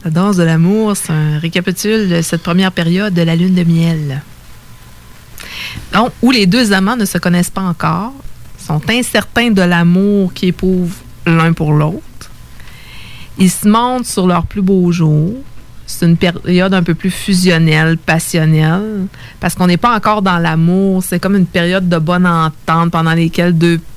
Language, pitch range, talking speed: English, 165-190 Hz, 170 wpm